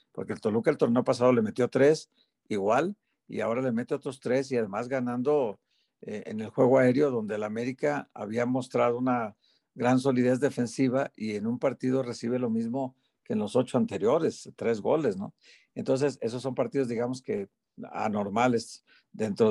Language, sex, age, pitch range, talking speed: Spanish, male, 50-69, 120-160 Hz, 170 wpm